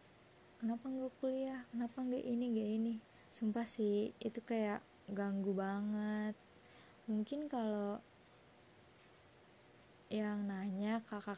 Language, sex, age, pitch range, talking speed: Indonesian, female, 20-39, 195-220 Hz, 100 wpm